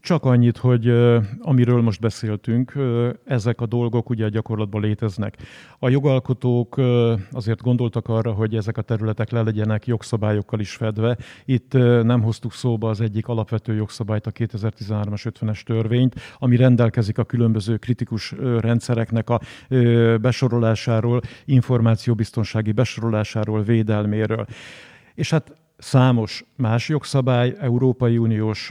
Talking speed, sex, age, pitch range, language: 120 wpm, male, 50-69, 110-125 Hz, Hungarian